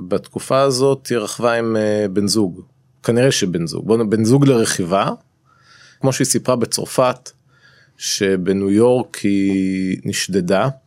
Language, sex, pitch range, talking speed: Hebrew, male, 100-125 Hz, 135 wpm